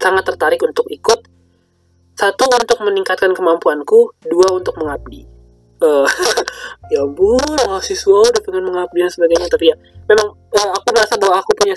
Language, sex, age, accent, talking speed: Indonesian, male, 20-39, native, 150 wpm